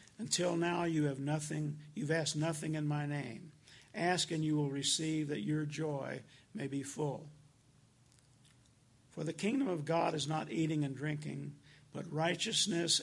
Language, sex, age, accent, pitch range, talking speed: English, male, 50-69, American, 140-160 Hz, 155 wpm